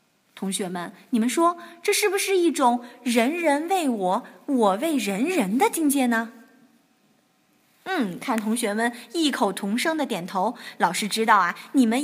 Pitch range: 205-285 Hz